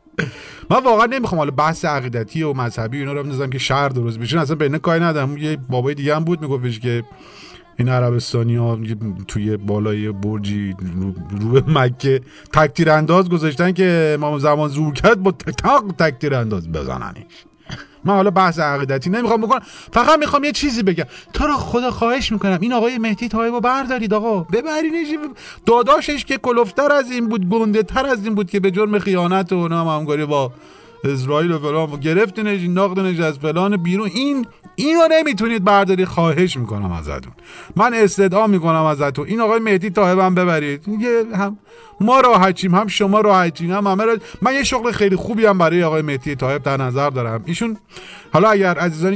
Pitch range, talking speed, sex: 145-220 Hz, 165 wpm, male